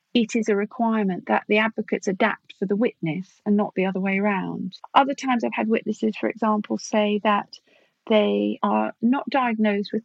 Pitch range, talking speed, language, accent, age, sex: 195-235 Hz, 185 wpm, English, British, 40-59, female